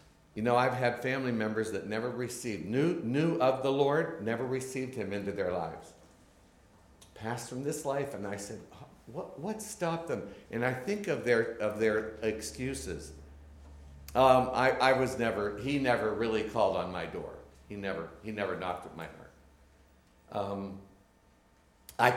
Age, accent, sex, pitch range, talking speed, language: 60-79, American, male, 95-120 Hz, 165 wpm, English